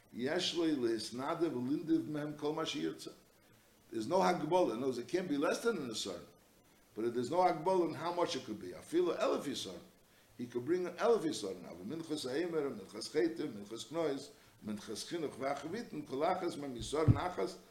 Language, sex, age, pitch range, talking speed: English, male, 60-79, 120-170 Hz, 120 wpm